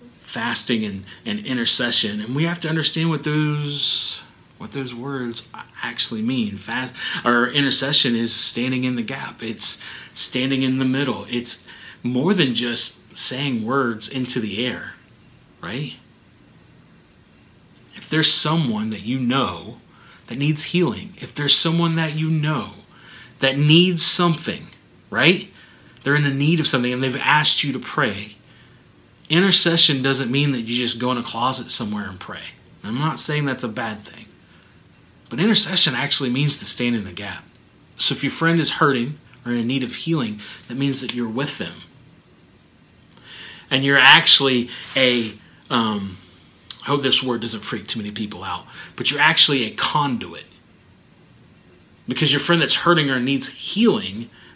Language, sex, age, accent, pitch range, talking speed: English, male, 30-49, American, 120-150 Hz, 160 wpm